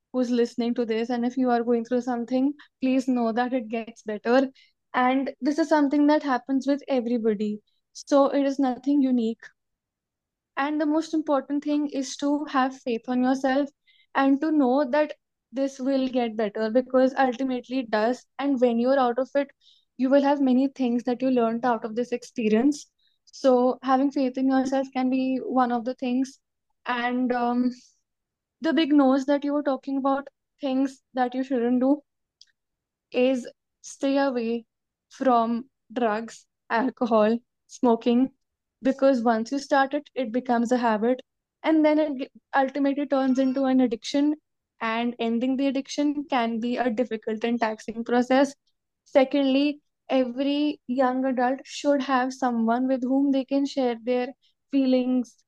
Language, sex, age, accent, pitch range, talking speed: English, female, 10-29, Indian, 245-275 Hz, 160 wpm